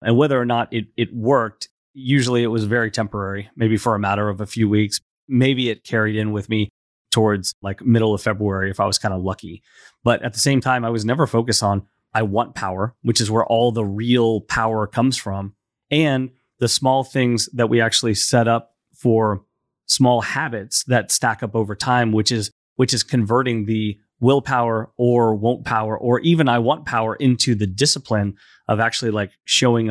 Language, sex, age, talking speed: English, male, 30-49, 195 wpm